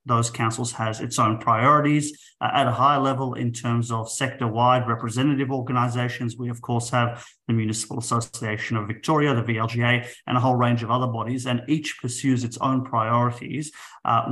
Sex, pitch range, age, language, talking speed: male, 115-140 Hz, 30-49, English, 175 wpm